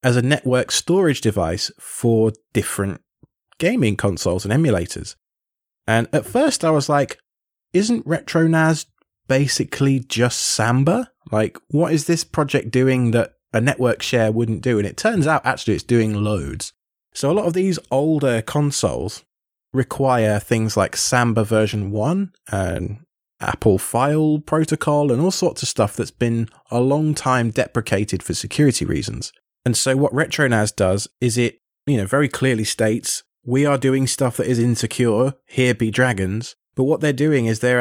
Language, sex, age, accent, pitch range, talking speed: English, male, 20-39, British, 110-140 Hz, 160 wpm